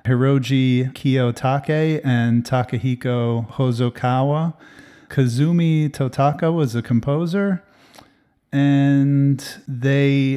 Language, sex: English, male